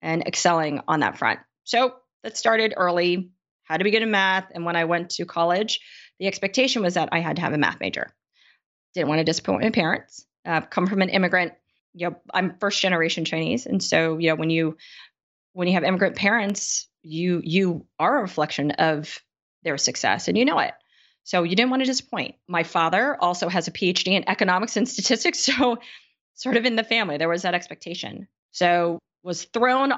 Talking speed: 200 wpm